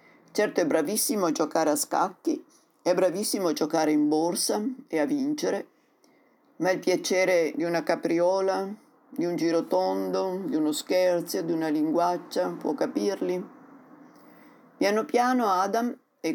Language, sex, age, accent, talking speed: Italian, female, 50-69, native, 140 wpm